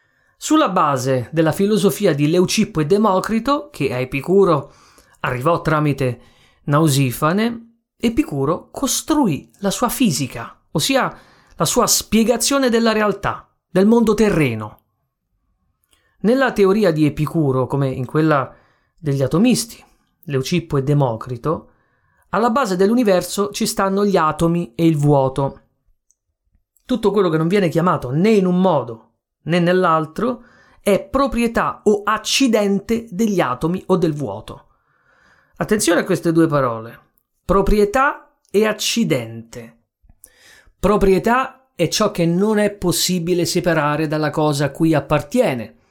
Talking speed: 120 wpm